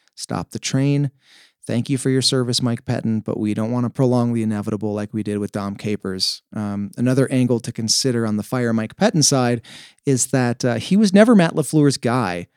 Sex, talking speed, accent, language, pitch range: male, 210 wpm, American, English, 110-135 Hz